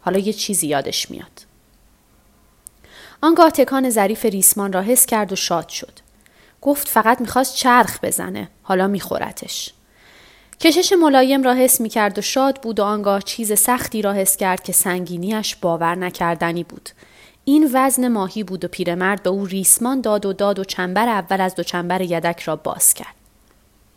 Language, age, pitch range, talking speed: Persian, 30-49, 180-230 Hz, 160 wpm